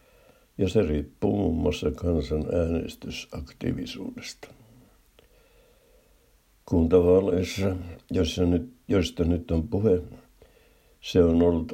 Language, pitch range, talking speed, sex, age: Finnish, 80-100 Hz, 80 wpm, male, 60-79